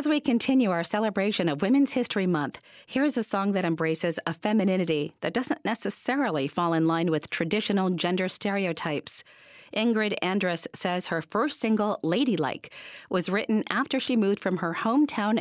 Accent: American